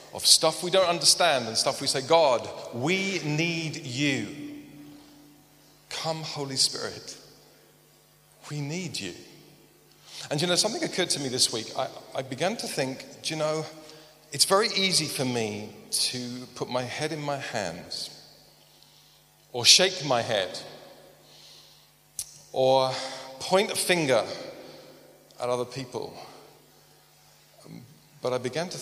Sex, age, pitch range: male, 40-59, 125-160 Hz